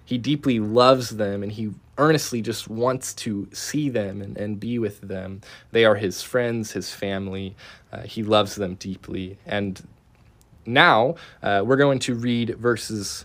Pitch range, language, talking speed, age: 95-130 Hz, English, 165 wpm, 20-39